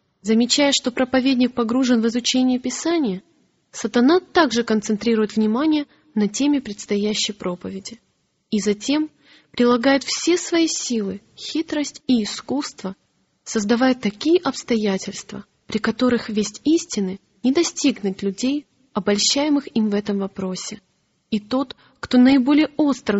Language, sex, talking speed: Russian, female, 115 wpm